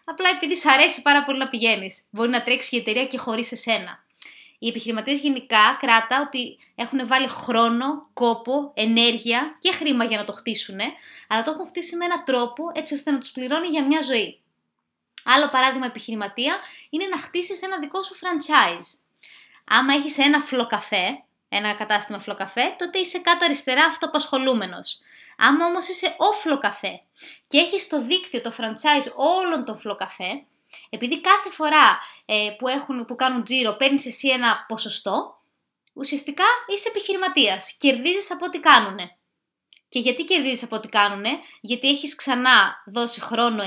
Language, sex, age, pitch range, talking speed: Greek, female, 20-39, 225-315 Hz, 155 wpm